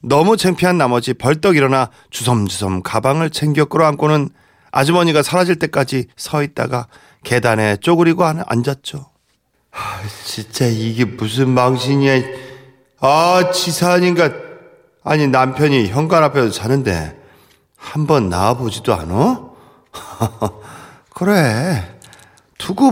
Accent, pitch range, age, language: native, 125-180 Hz, 40-59, Korean